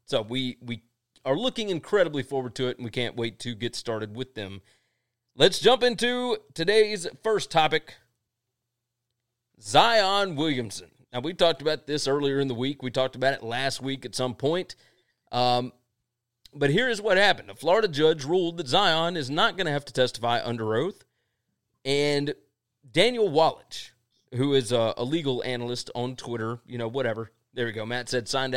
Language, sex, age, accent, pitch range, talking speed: English, male, 30-49, American, 120-155 Hz, 180 wpm